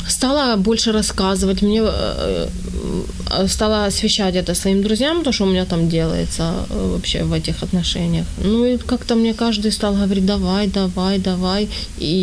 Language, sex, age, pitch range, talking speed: Ukrainian, female, 20-39, 170-210 Hz, 145 wpm